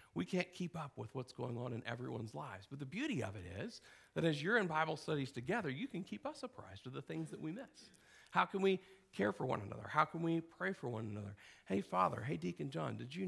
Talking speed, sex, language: 255 wpm, male, English